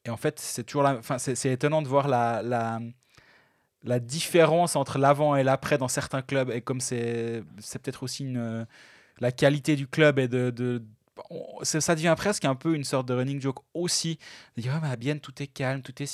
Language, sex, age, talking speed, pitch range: French, male, 20-39, 215 wpm, 130-155 Hz